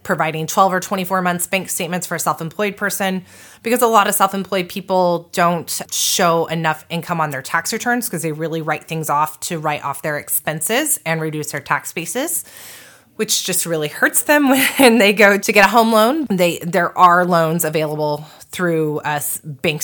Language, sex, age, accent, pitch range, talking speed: English, female, 20-39, American, 150-185 Hz, 190 wpm